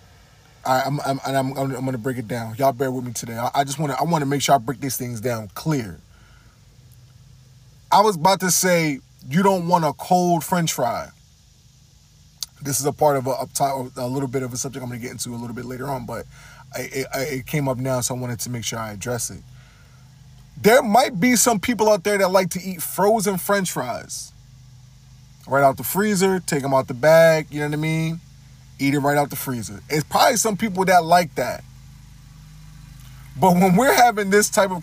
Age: 20-39